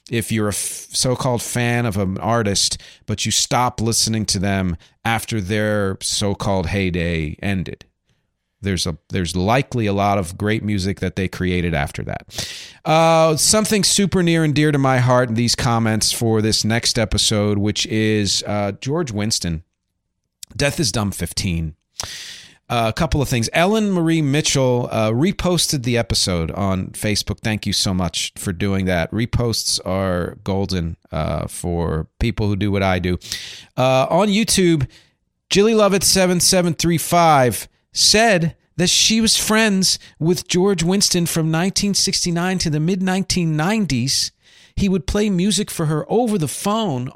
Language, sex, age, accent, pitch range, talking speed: English, male, 40-59, American, 105-170 Hz, 150 wpm